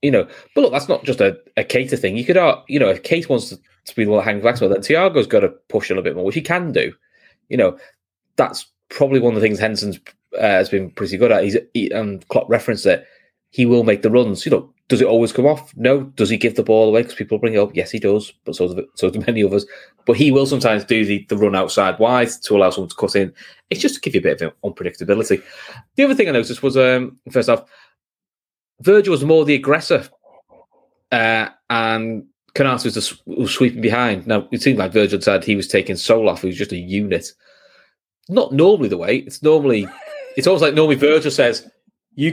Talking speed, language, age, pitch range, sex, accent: 245 wpm, English, 20-39, 110-155 Hz, male, British